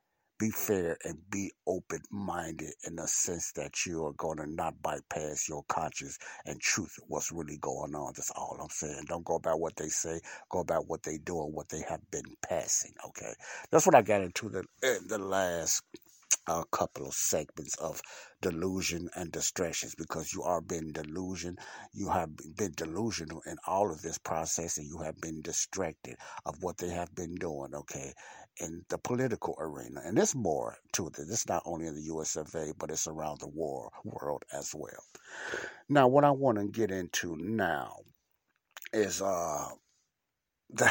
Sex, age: male, 60-79